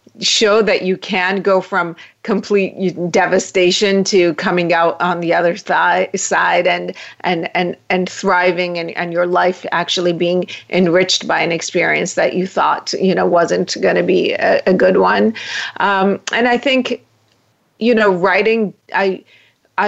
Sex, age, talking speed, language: female, 40-59, 155 wpm, English